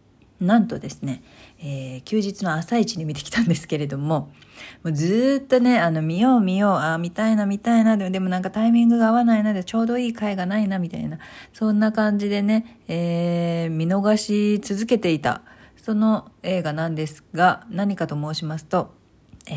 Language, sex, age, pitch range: Japanese, female, 40-59, 150-230 Hz